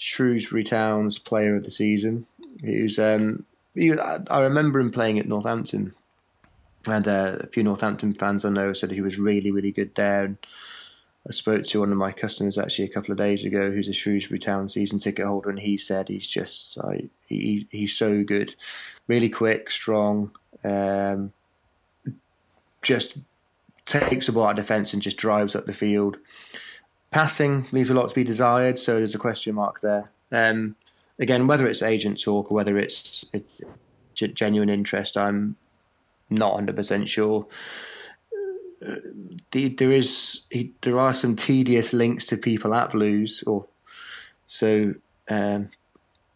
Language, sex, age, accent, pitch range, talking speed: English, male, 20-39, British, 100-115 Hz, 160 wpm